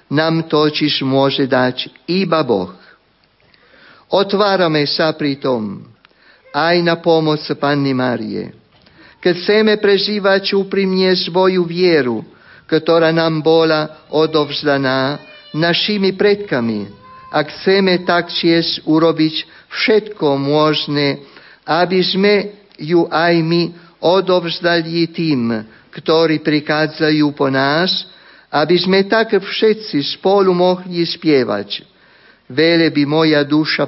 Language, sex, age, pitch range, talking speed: Slovak, male, 50-69, 145-180 Hz, 100 wpm